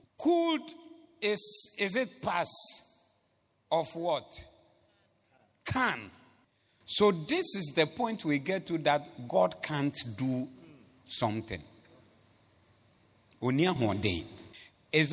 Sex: male